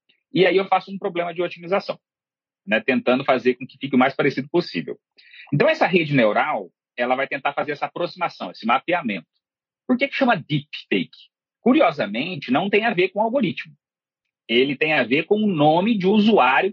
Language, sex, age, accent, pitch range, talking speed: Portuguese, male, 40-59, Brazilian, 140-205 Hz, 185 wpm